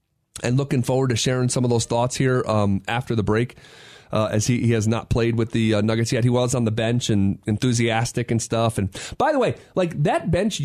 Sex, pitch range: male, 110-150 Hz